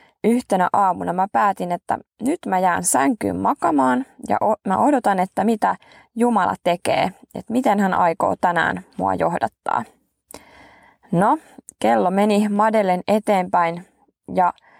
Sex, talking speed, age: female, 125 wpm, 20-39